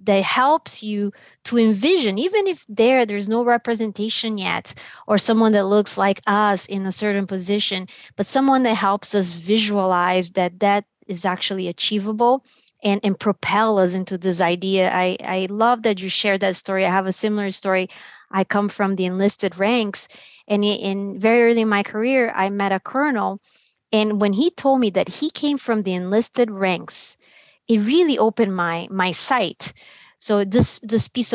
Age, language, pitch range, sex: 30-49, English, 195-230 Hz, female